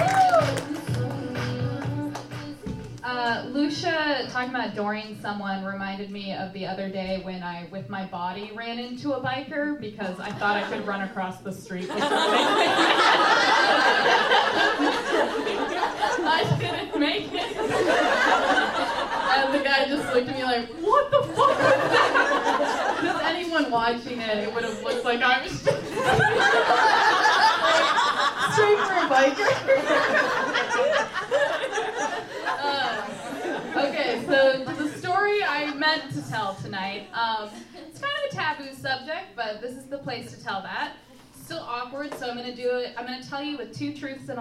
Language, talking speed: English, 135 wpm